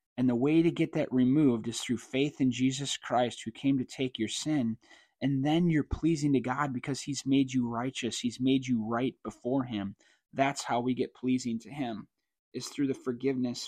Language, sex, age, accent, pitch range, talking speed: English, male, 30-49, American, 125-175 Hz, 205 wpm